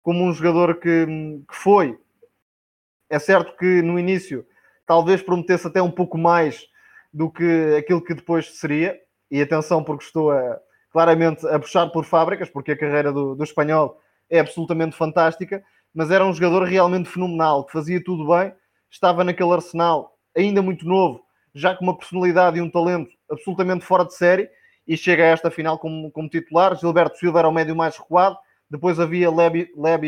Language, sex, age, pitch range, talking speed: Portuguese, male, 20-39, 160-180 Hz, 170 wpm